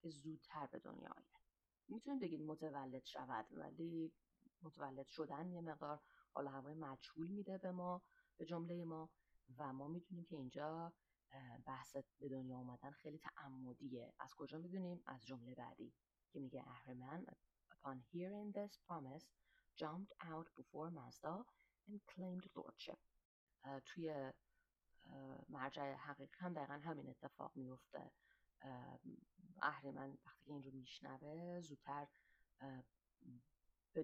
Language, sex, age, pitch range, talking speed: Persian, female, 30-49, 130-160 Hz, 120 wpm